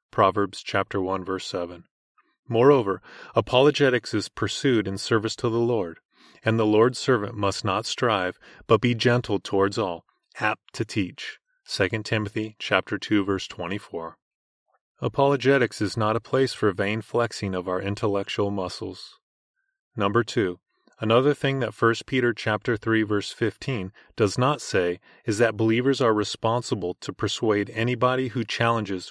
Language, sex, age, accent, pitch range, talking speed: English, male, 30-49, American, 100-125 Hz, 145 wpm